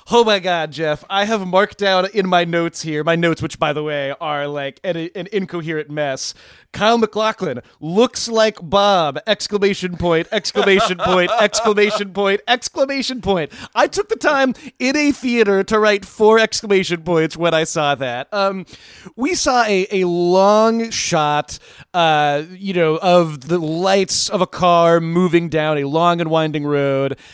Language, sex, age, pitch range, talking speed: English, male, 30-49, 160-195 Hz, 165 wpm